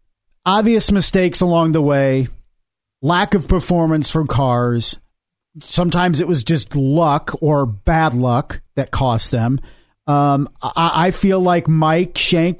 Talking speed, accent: 135 wpm, American